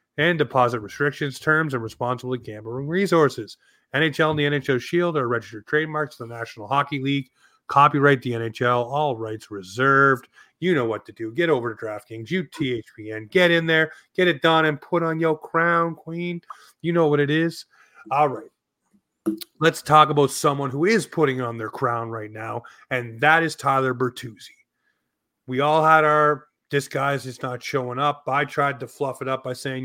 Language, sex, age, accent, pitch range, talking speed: English, male, 30-49, American, 120-150 Hz, 185 wpm